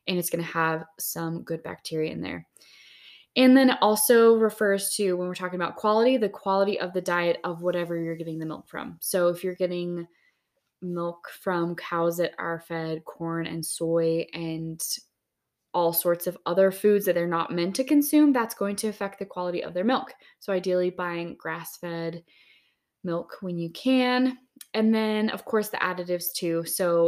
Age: 20-39